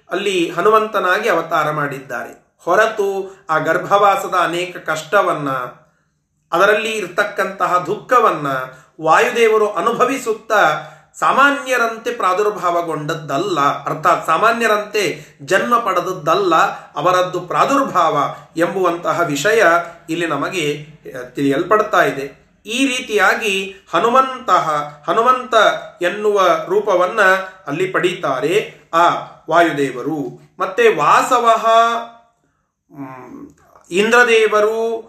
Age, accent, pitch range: 40-59, native, 160-230 Hz